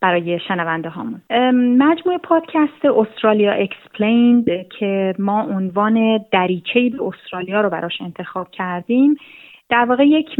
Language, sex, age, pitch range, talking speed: Persian, female, 30-49, 195-255 Hz, 115 wpm